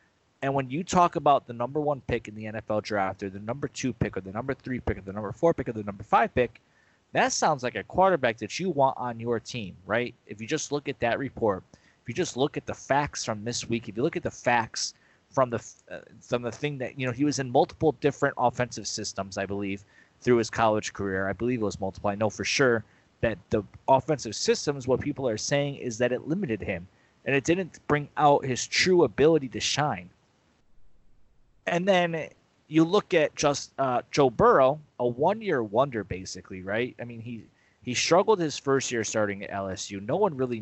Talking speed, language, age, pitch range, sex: 220 wpm, English, 20-39, 105-145 Hz, male